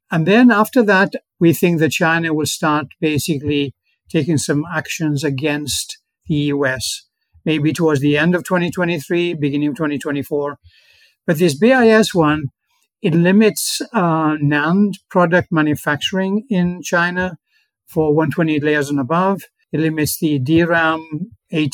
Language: English